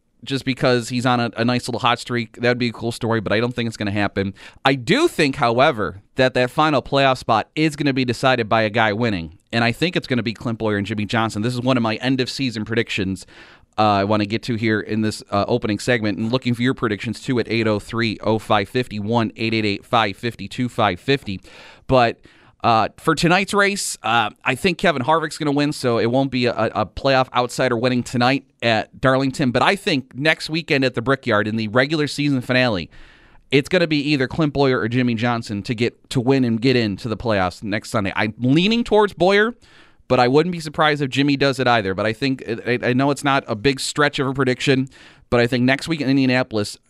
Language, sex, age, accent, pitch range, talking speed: English, male, 30-49, American, 110-135 Hz, 225 wpm